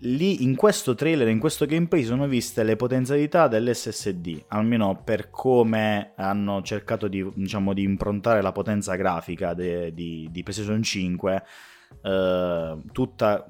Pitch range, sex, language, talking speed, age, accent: 95-115 Hz, male, Italian, 135 wpm, 20-39, native